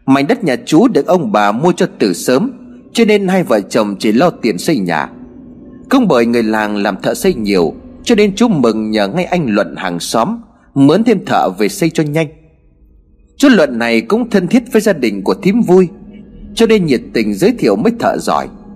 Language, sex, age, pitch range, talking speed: Vietnamese, male, 30-49, 145-235 Hz, 215 wpm